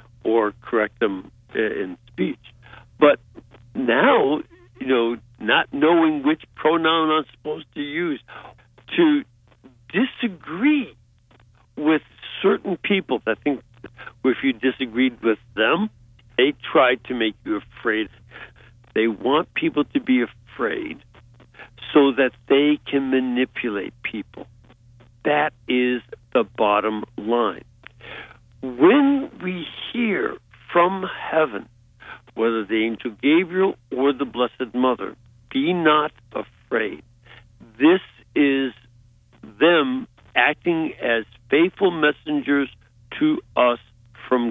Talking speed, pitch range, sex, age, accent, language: 105 wpm, 115-155 Hz, male, 60-79, American, English